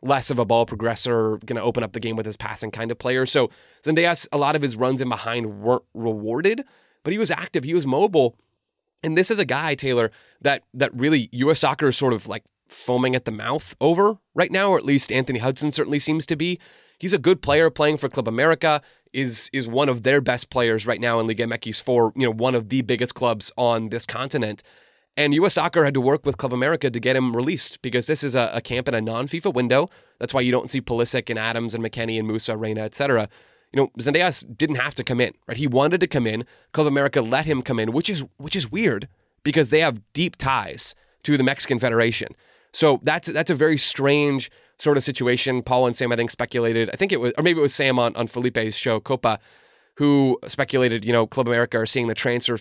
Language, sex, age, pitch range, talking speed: English, male, 30-49, 115-145 Hz, 235 wpm